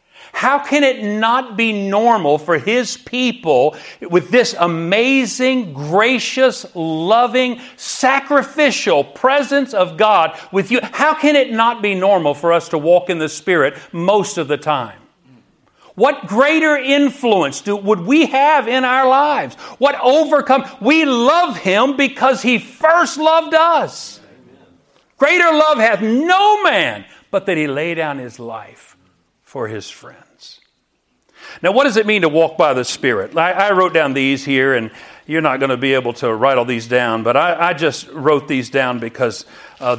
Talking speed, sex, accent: 160 wpm, male, American